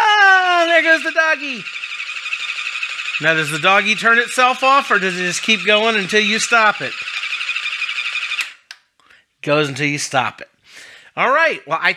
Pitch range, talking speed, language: 160-255 Hz, 150 wpm, English